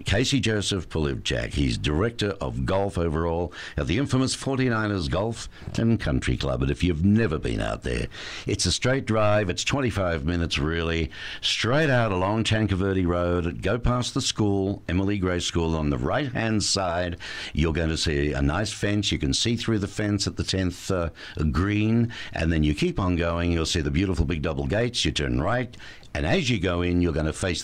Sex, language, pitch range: male, English, 80-110 Hz